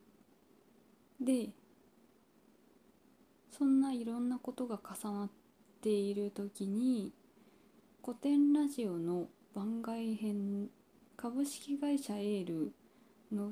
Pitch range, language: 195-245 Hz, Japanese